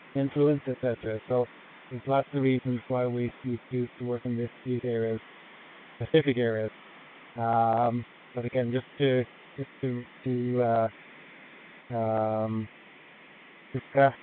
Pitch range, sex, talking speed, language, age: 115-130 Hz, male, 120 wpm, English, 20-39